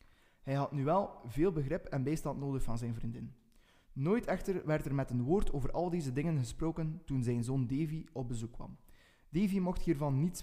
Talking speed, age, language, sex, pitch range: 200 wpm, 20-39, Dutch, male, 130-185 Hz